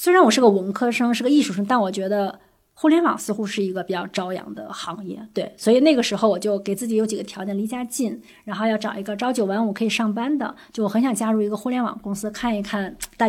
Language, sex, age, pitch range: Chinese, female, 20-39, 195-255 Hz